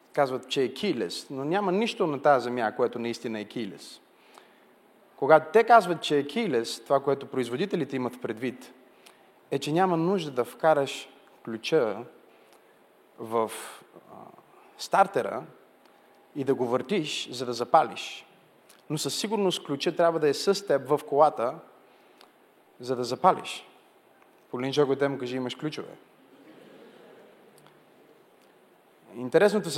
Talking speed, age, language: 125 wpm, 30-49, Bulgarian